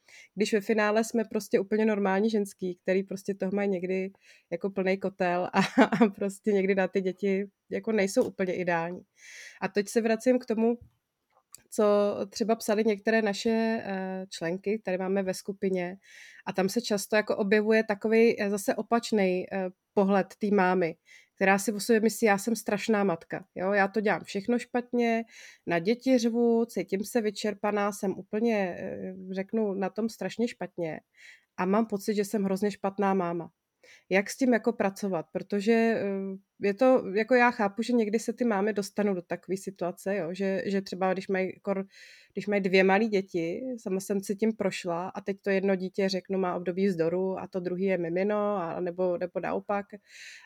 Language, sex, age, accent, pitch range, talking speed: Czech, female, 30-49, native, 190-220 Hz, 170 wpm